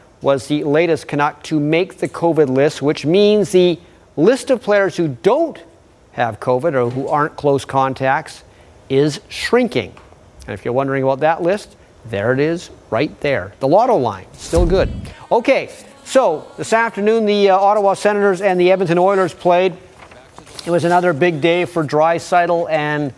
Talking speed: 165 wpm